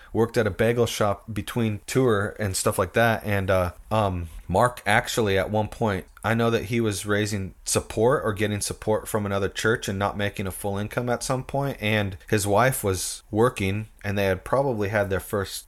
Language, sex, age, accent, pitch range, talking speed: English, male, 30-49, American, 95-110 Hz, 205 wpm